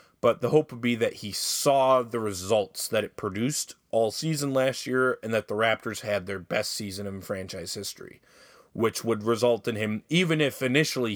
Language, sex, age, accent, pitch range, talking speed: English, male, 30-49, American, 105-130 Hz, 195 wpm